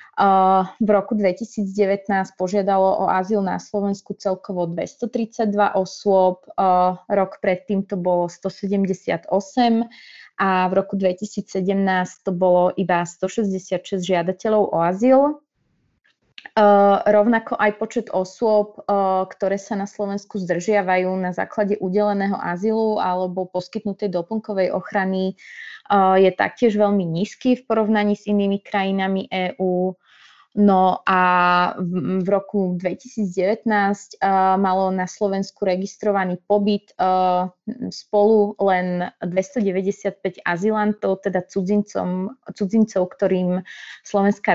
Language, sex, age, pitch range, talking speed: Slovak, female, 20-39, 185-205 Hz, 105 wpm